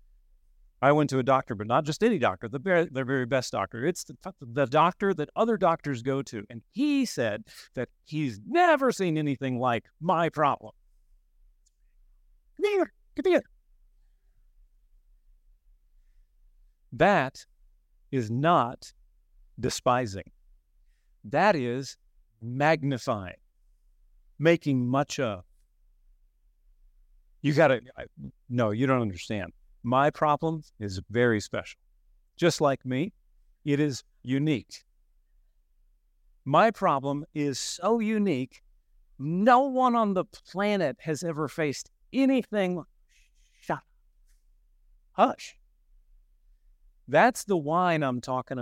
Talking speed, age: 105 wpm, 50-69